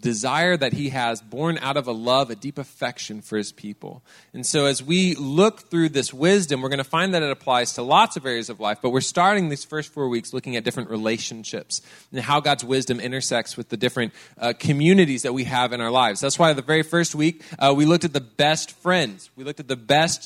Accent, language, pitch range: American, English, 120-150 Hz